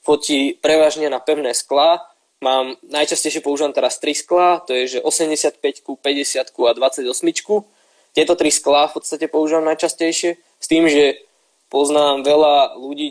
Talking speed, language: 140 wpm, Slovak